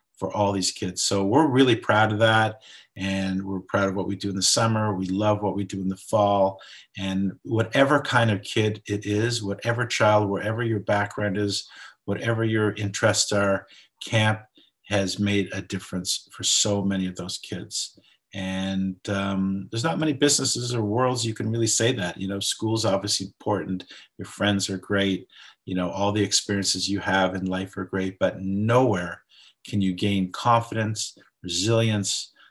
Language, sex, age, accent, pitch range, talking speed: English, male, 50-69, American, 95-110 Hz, 175 wpm